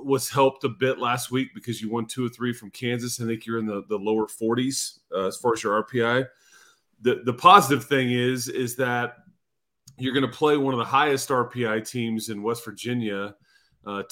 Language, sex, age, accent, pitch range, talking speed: English, male, 30-49, American, 105-125 Hz, 210 wpm